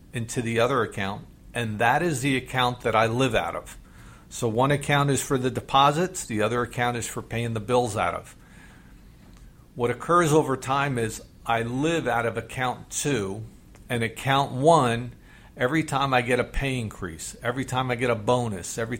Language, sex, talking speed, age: English, male, 185 wpm, 50-69